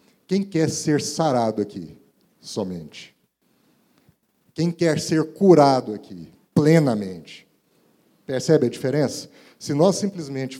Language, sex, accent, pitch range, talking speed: Portuguese, male, Brazilian, 115-150 Hz, 100 wpm